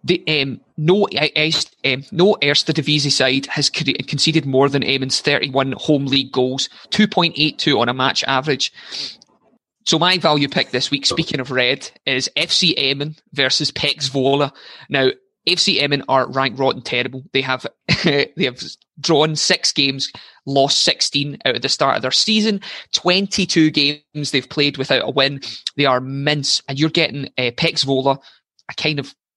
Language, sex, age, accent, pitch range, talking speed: English, male, 20-39, British, 130-155 Hz, 180 wpm